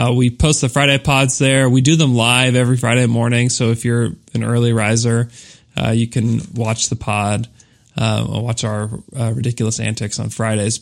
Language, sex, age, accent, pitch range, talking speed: English, male, 20-39, American, 115-135 Hz, 195 wpm